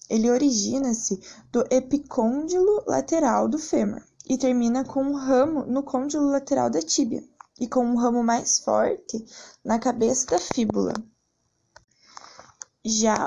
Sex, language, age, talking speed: female, Portuguese, 10-29, 125 wpm